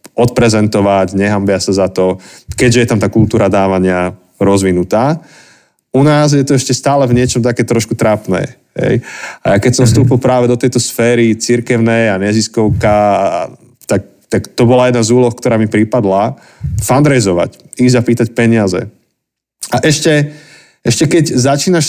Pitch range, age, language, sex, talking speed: 110-140 Hz, 30-49, Slovak, male, 150 wpm